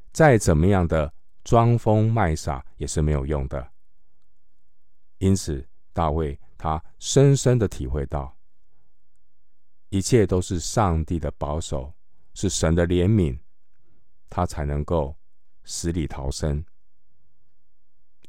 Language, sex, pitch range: Chinese, male, 75-95 Hz